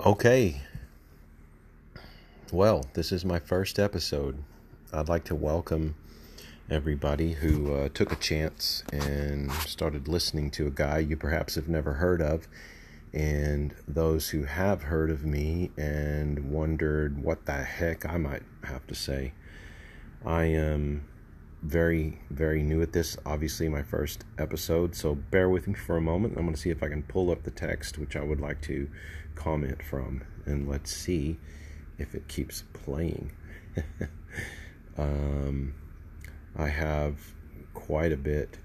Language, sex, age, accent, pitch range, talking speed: English, male, 40-59, American, 75-80 Hz, 150 wpm